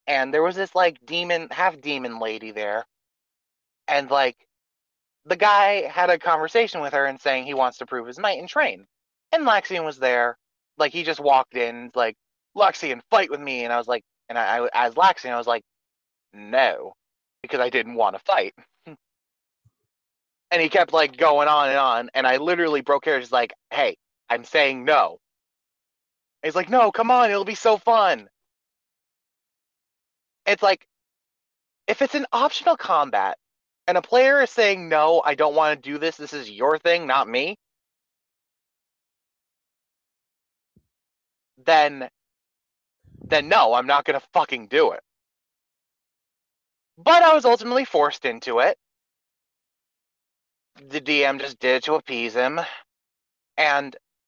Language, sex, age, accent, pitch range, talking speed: English, male, 20-39, American, 120-195 Hz, 155 wpm